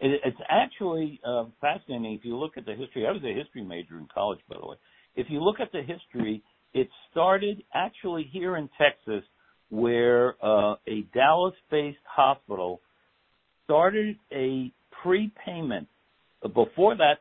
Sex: male